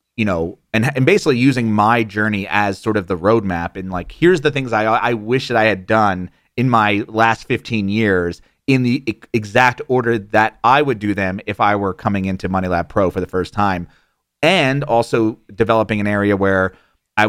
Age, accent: 30-49, American